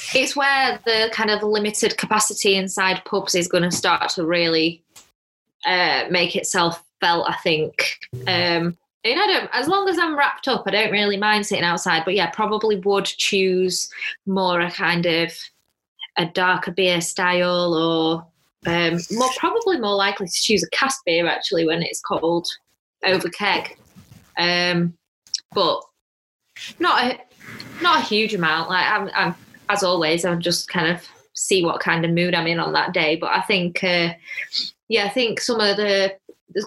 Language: English